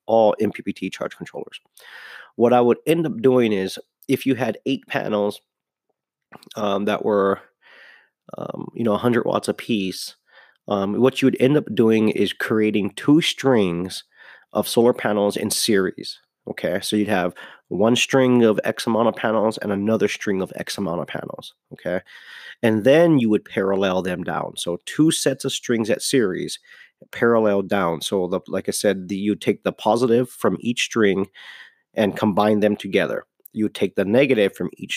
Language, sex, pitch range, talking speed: English, male, 100-120 Hz, 170 wpm